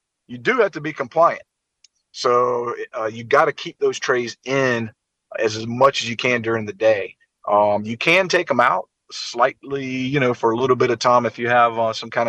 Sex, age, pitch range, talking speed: male, 30-49, 110-130 Hz, 220 wpm